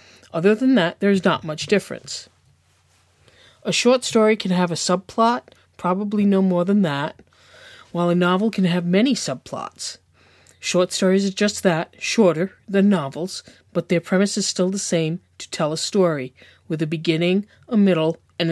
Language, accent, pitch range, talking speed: English, American, 175-215 Hz, 170 wpm